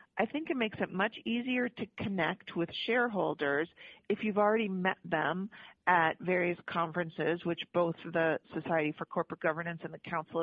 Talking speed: 165 wpm